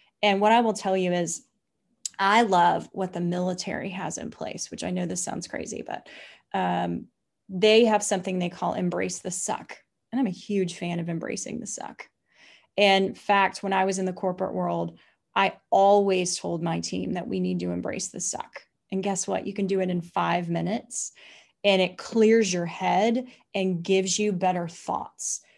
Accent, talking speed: American, 190 wpm